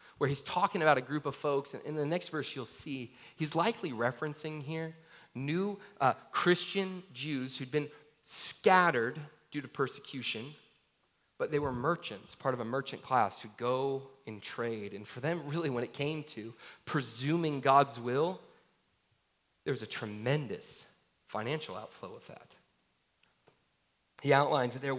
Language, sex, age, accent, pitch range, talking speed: English, male, 30-49, American, 125-155 Hz, 155 wpm